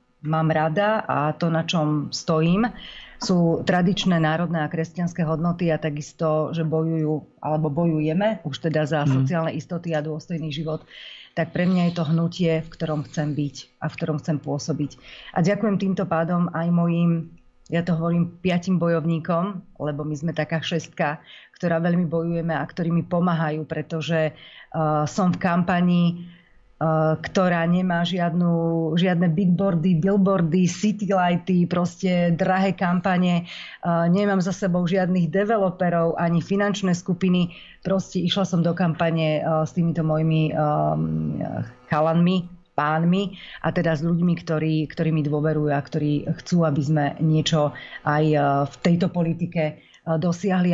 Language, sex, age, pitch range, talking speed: Slovak, female, 30-49, 155-175 Hz, 135 wpm